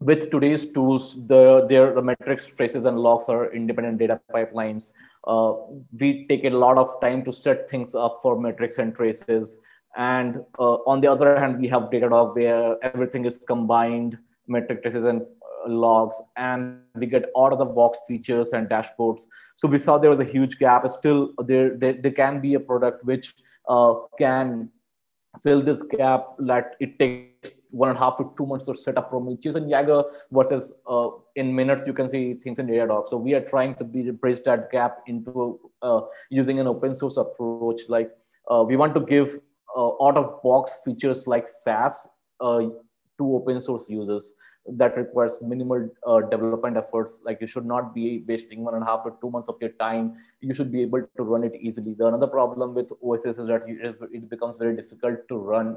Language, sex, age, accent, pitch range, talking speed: English, male, 20-39, Indian, 115-135 Hz, 190 wpm